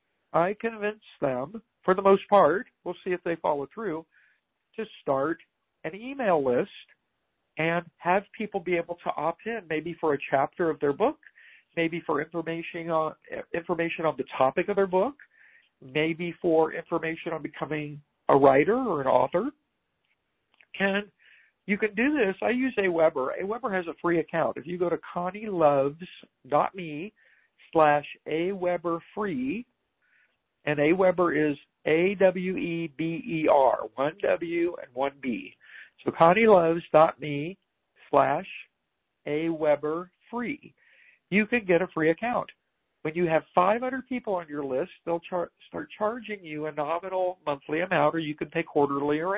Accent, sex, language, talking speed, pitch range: American, male, English, 140 wpm, 155-205 Hz